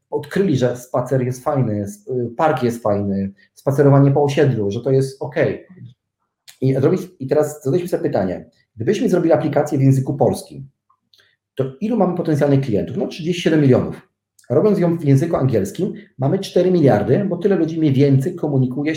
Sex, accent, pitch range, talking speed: male, native, 125-155 Hz, 150 wpm